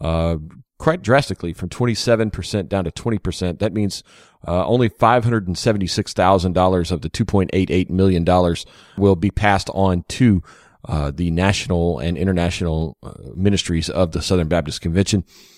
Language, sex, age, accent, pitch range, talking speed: English, male, 40-59, American, 90-115 Hz, 130 wpm